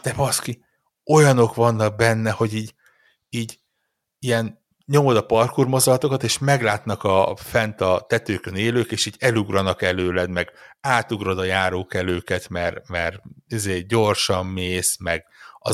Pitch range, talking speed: 95-120 Hz, 135 wpm